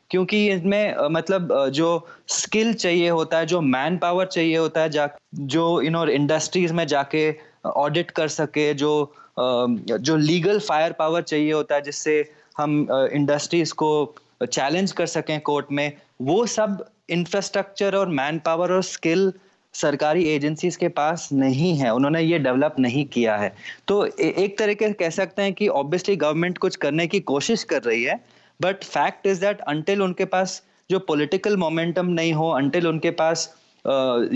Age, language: 20-39, English